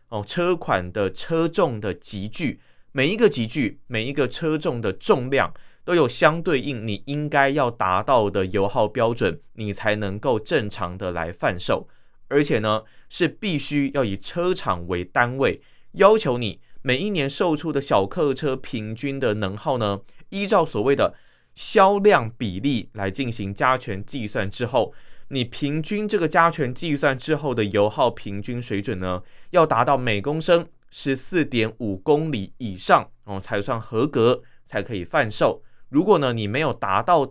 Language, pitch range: Chinese, 105-155 Hz